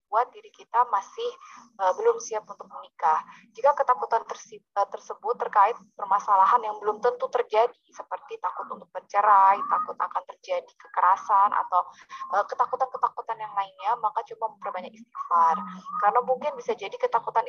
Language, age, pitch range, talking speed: Indonesian, 20-39, 205-285 Hz, 135 wpm